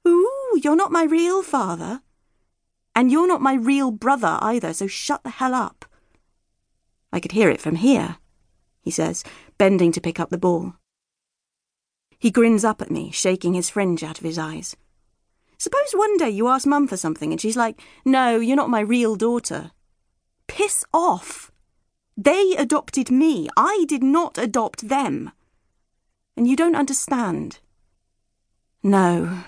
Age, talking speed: 30-49, 155 wpm